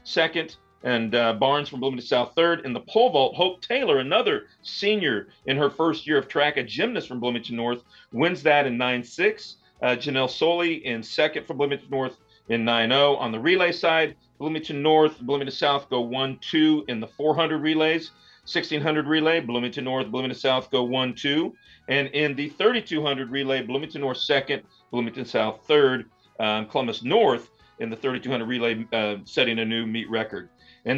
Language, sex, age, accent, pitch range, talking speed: English, male, 40-59, American, 115-155 Hz, 175 wpm